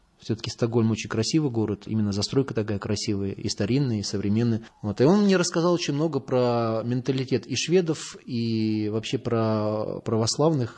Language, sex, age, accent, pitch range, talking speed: Russian, male, 20-39, native, 110-130 Hz, 155 wpm